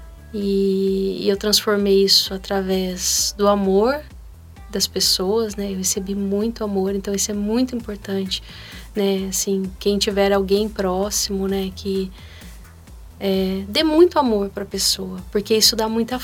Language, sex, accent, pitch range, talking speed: Portuguese, female, Brazilian, 195-225 Hz, 140 wpm